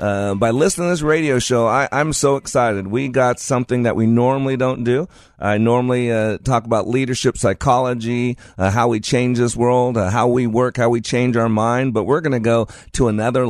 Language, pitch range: English, 100-125 Hz